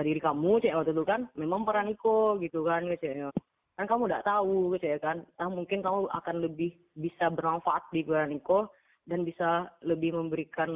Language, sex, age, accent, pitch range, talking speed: Indonesian, female, 20-39, native, 160-205 Hz, 160 wpm